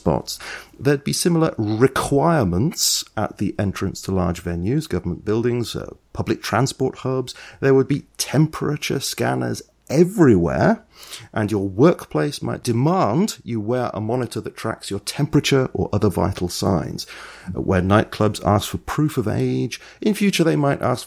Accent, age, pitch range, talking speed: British, 30-49, 95-130 Hz, 150 wpm